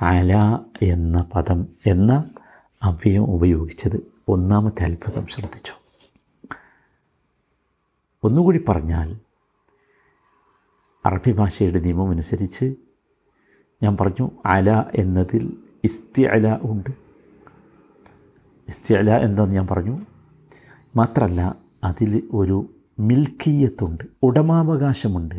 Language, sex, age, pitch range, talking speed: Malayalam, male, 50-69, 100-140 Hz, 70 wpm